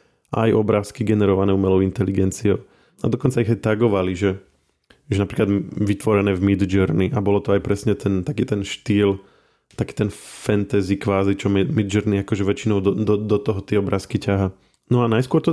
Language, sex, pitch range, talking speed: Slovak, male, 100-120 Hz, 175 wpm